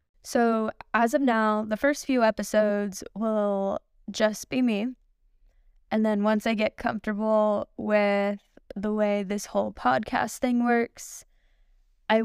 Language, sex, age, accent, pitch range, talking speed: English, female, 10-29, American, 205-250 Hz, 130 wpm